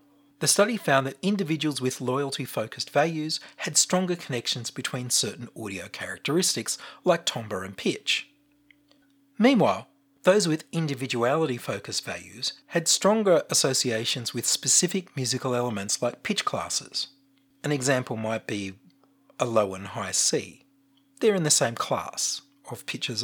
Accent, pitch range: Australian, 130-180 Hz